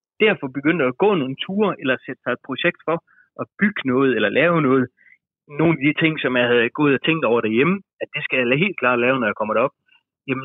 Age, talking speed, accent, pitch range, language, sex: 30-49, 240 wpm, native, 125-160 Hz, Danish, male